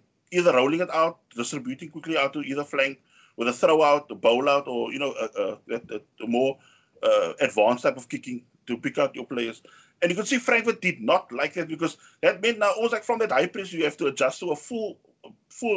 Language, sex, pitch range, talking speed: English, male, 140-195 Hz, 230 wpm